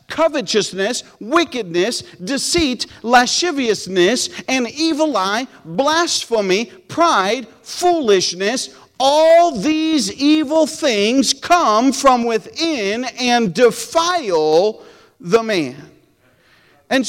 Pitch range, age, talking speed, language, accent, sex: 230-310 Hz, 50-69, 75 wpm, English, American, male